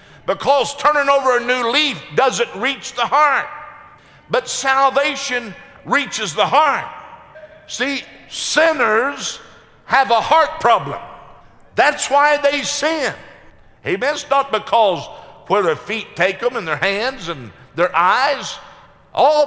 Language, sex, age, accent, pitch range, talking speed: English, male, 60-79, American, 235-300 Hz, 125 wpm